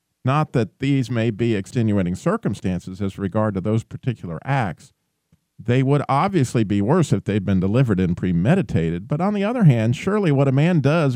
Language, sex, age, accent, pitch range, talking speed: English, male, 50-69, American, 105-145 Hz, 185 wpm